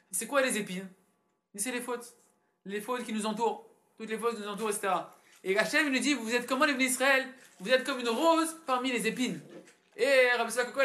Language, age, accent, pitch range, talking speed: French, 20-39, French, 220-270 Hz, 215 wpm